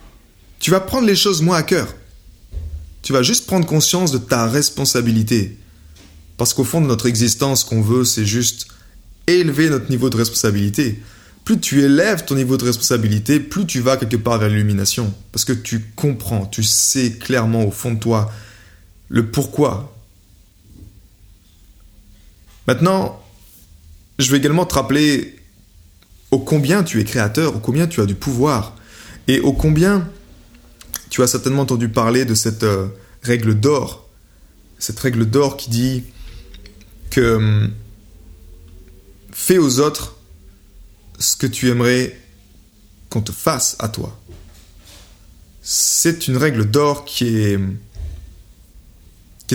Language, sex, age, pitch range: French, male, 20-39, 95-130 Hz